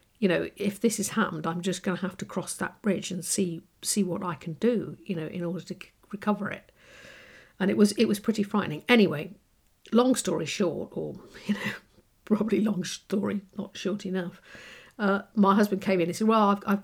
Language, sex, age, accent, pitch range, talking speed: English, female, 50-69, British, 180-205 Hz, 210 wpm